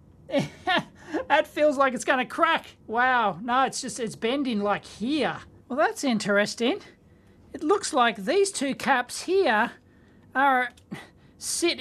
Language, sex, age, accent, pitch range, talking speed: English, male, 40-59, Australian, 220-280 Hz, 130 wpm